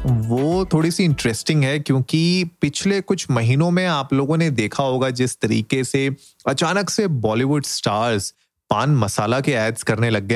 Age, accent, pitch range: 30-49, native, 115-155 Hz